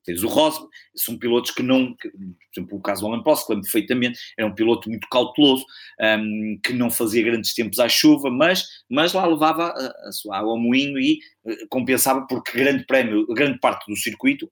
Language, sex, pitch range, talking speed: Portuguese, male, 110-165 Hz, 205 wpm